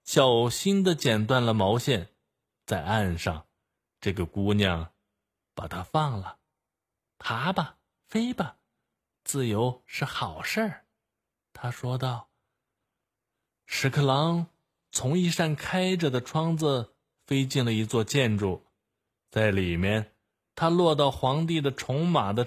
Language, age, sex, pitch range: Chinese, 20-39, male, 105-145 Hz